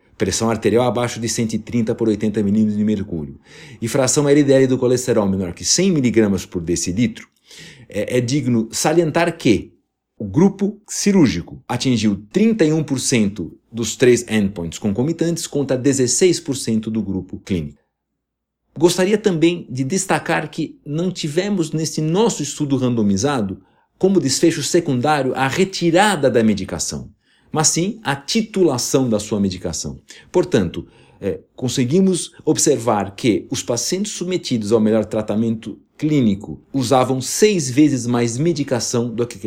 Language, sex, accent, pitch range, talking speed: Portuguese, male, Brazilian, 105-155 Hz, 125 wpm